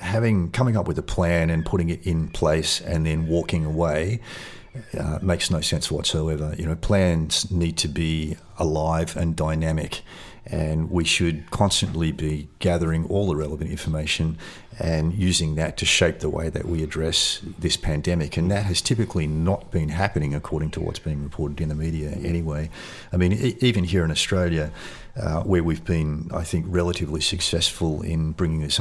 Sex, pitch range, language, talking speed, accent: male, 80-90 Hz, English, 175 wpm, Australian